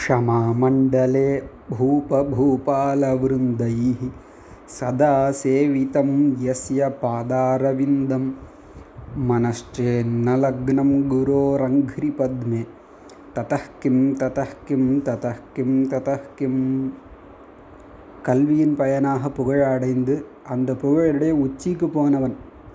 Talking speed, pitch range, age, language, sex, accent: 65 wpm, 130-145 Hz, 20-39, Tamil, male, native